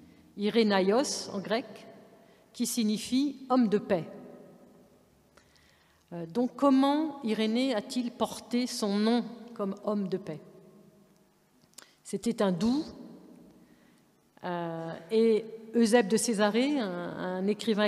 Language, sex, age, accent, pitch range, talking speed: French, female, 50-69, French, 190-225 Hz, 100 wpm